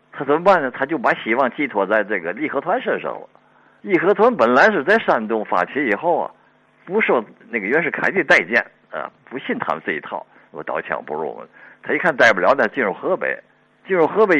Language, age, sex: Chinese, 50-69, male